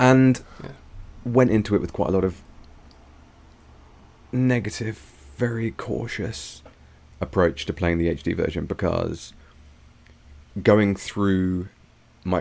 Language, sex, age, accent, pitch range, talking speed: English, male, 30-49, British, 80-95 Hz, 105 wpm